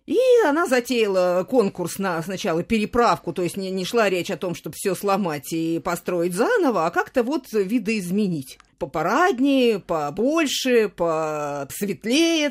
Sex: female